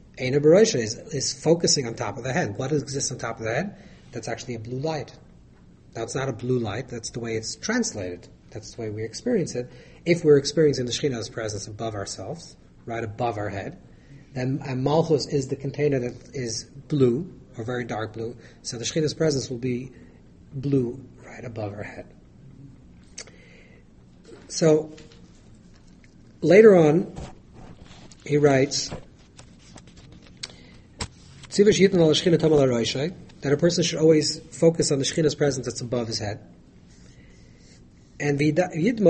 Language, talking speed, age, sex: English, 145 wpm, 40-59, male